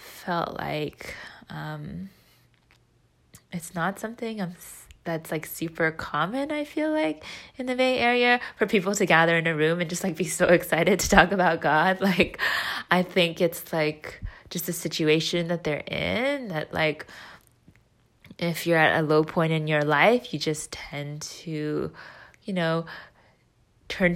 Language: English